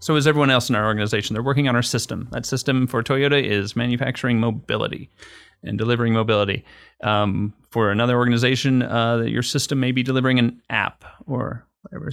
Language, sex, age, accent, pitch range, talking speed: English, male, 30-49, American, 110-135 Hz, 180 wpm